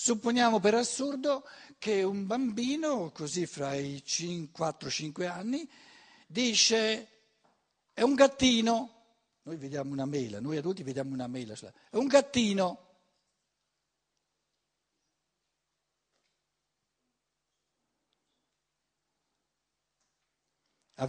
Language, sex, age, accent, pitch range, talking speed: Italian, male, 60-79, native, 140-220 Hz, 80 wpm